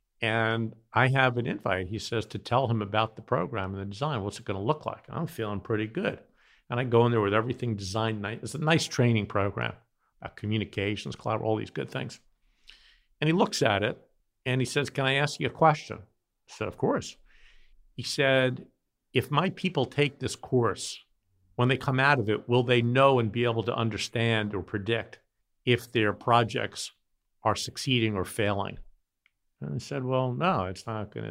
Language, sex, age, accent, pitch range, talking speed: English, male, 50-69, American, 110-130 Hz, 190 wpm